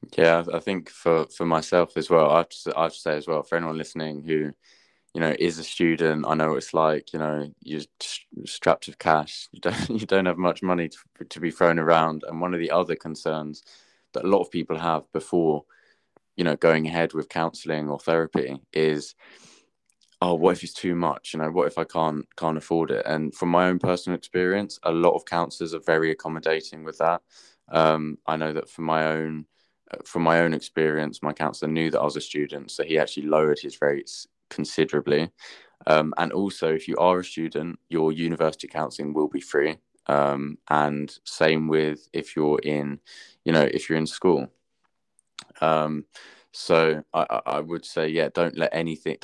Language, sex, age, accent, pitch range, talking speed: English, male, 20-39, British, 75-85 Hz, 195 wpm